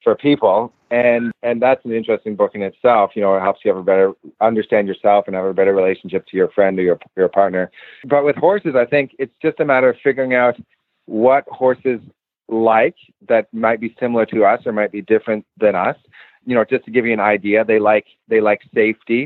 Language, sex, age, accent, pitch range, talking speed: English, male, 30-49, American, 100-125 Hz, 225 wpm